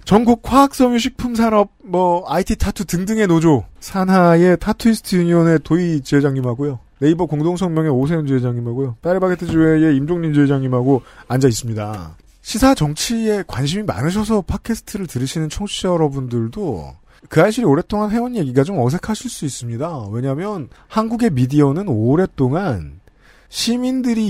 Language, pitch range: Korean, 130-200 Hz